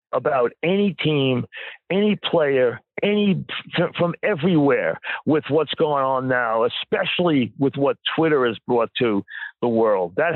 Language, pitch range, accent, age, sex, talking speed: English, 145-180 Hz, American, 50-69, male, 135 wpm